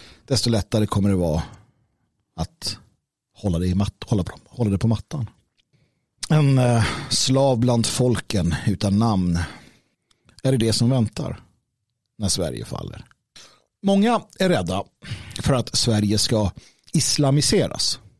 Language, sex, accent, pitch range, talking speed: Swedish, male, native, 105-130 Hz, 130 wpm